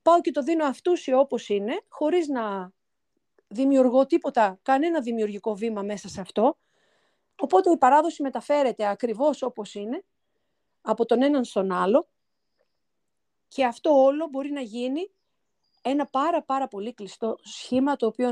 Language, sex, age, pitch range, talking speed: Greek, female, 40-59, 225-290 Hz, 145 wpm